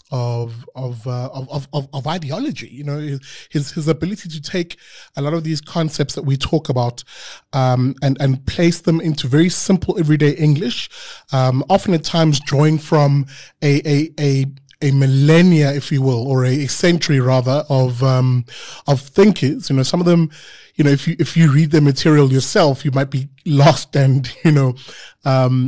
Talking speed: 180 wpm